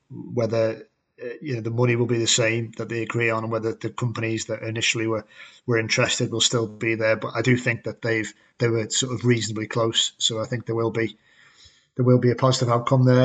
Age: 30-49